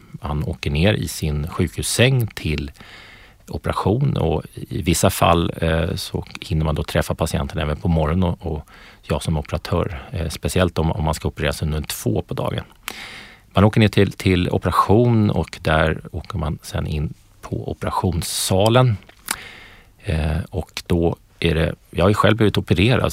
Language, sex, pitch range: Swedish, male, 80-100 Hz